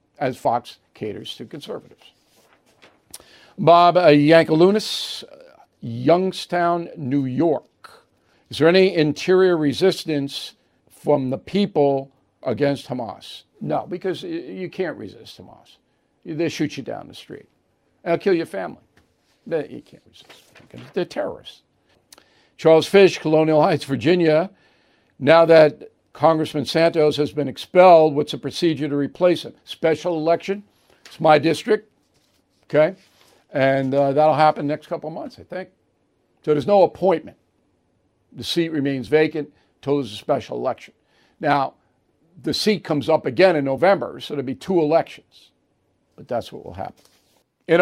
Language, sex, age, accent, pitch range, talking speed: English, male, 60-79, American, 145-180 Hz, 135 wpm